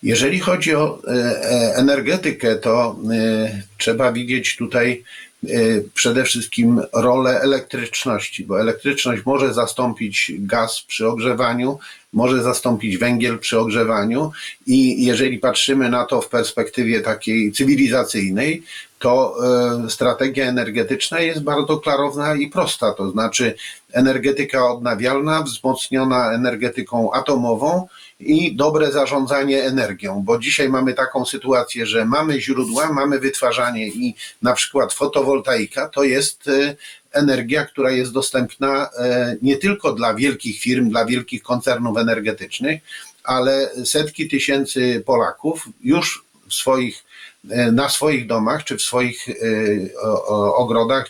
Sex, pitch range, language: male, 120-145 Hz, Polish